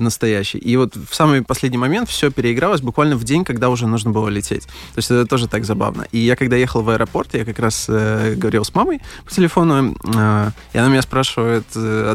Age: 20-39